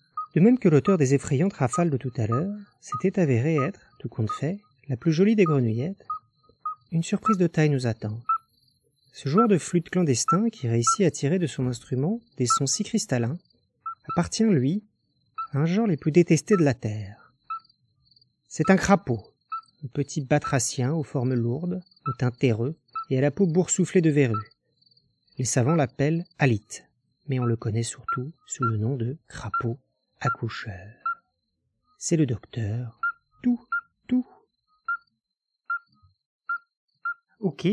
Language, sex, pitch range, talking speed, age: French, male, 130-195 Hz, 150 wpm, 40-59